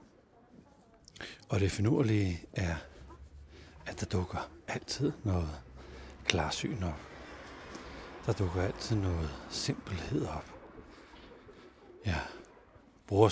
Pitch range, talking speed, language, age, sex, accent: 80-100 Hz, 85 wpm, Danish, 60-79, male, native